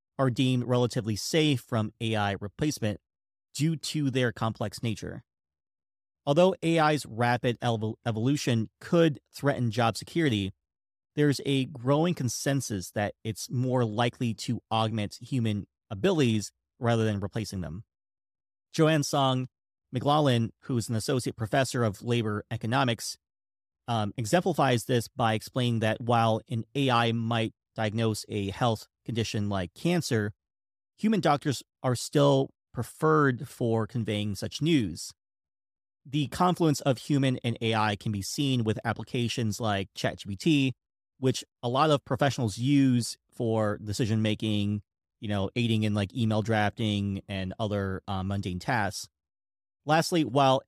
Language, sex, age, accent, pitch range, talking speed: English, male, 30-49, American, 105-135 Hz, 130 wpm